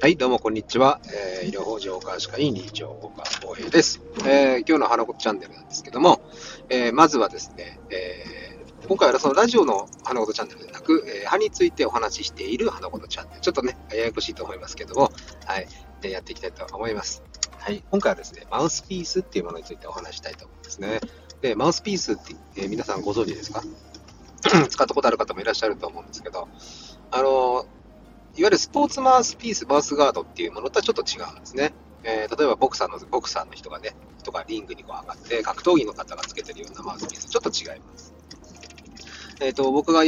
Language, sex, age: Japanese, male, 40-59